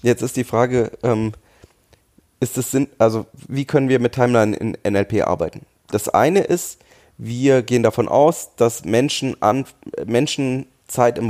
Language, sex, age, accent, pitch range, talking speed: German, male, 30-49, German, 105-130 Hz, 155 wpm